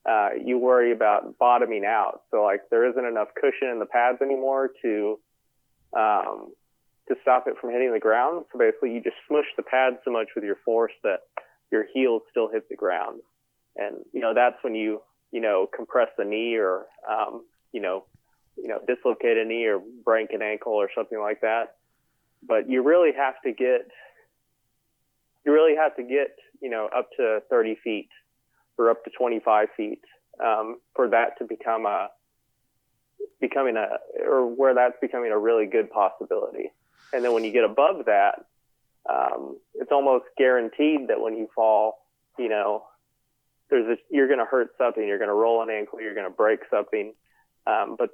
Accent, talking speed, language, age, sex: American, 180 wpm, English, 30-49, male